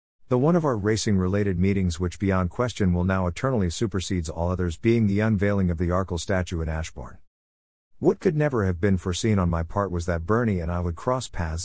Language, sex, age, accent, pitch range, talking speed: English, male, 50-69, American, 90-115 Hz, 210 wpm